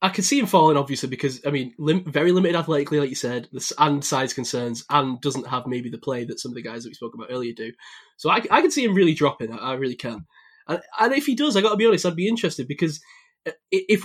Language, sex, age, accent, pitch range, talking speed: English, male, 20-39, British, 140-215 Hz, 275 wpm